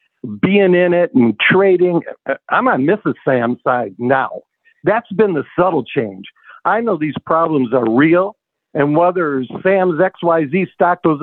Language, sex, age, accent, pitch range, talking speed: English, male, 60-79, American, 140-190 Hz, 150 wpm